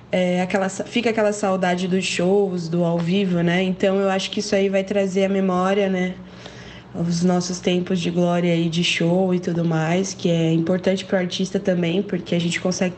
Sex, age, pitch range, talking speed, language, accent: female, 20-39, 180-200 Hz, 205 wpm, Portuguese, Brazilian